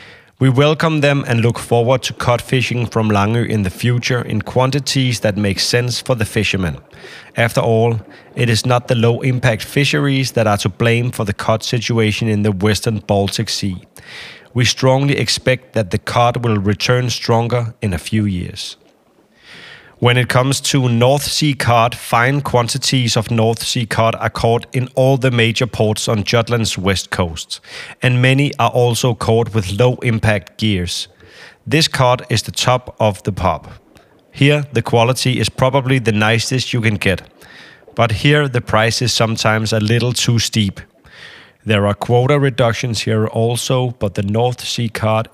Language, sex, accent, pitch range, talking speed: Danish, male, native, 110-125 Hz, 170 wpm